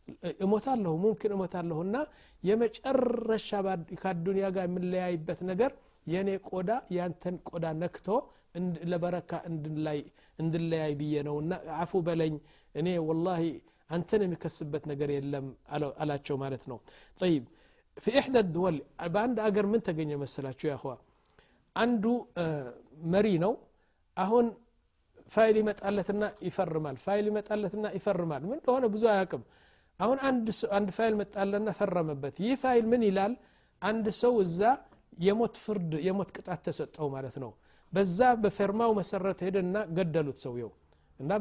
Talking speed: 110 wpm